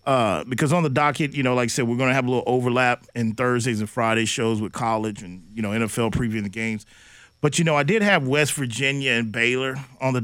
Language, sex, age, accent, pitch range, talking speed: English, male, 40-59, American, 120-160 Hz, 250 wpm